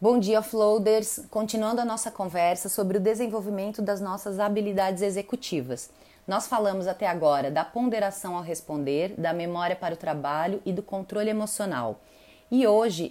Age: 30-49